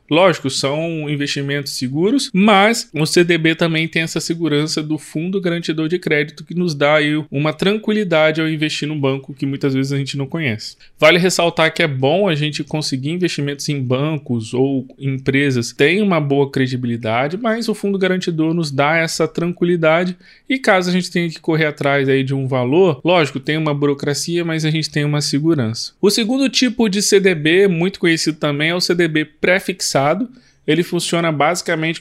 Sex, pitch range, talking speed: male, 140-180 Hz, 180 wpm